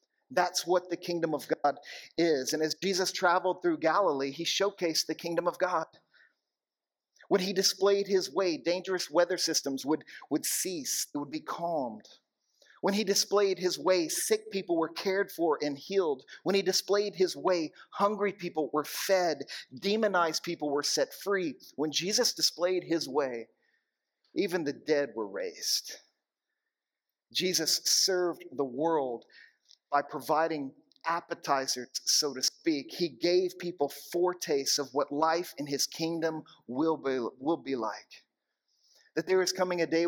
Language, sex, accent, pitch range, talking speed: English, male, American, 155-190 Hz, 150 wpm